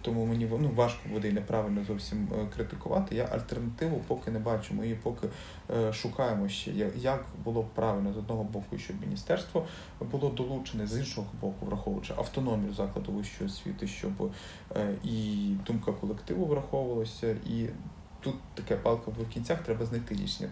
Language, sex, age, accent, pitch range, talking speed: Ukrainian, male, 20-39, native, 105-120 Hz, 155 wpm